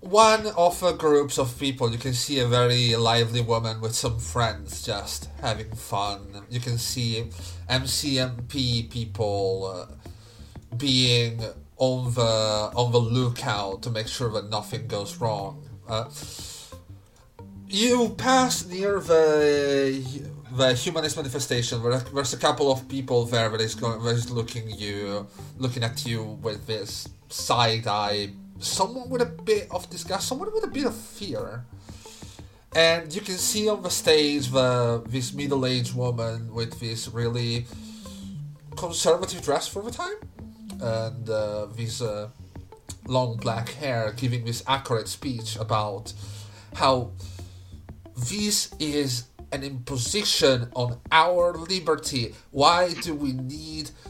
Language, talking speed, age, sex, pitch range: English, 135 wpm, 30-49, male, 110-140 Hz